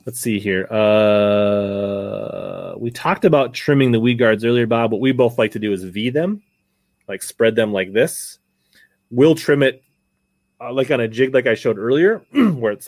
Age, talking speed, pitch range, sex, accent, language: 30-49, 190 wpm, 100-135 Hz, male, American, English